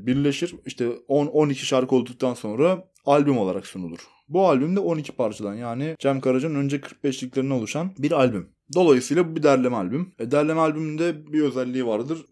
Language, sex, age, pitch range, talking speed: Turkish, male, 20-39, 115-150 Hz, 165 wpm